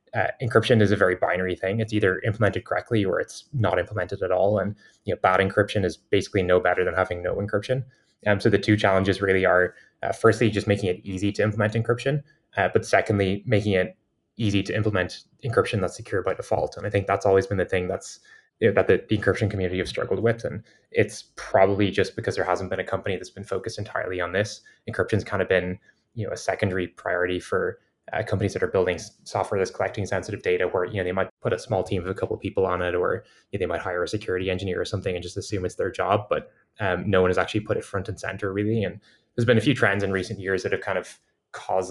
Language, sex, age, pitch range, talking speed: English, male, 20-39, 95-110 Hz, 245 wpm